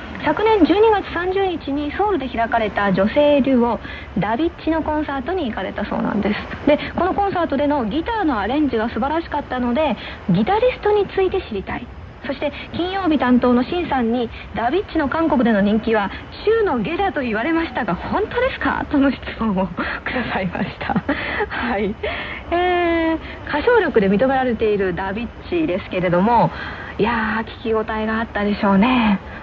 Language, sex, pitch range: Korean, female, 215-305 Hz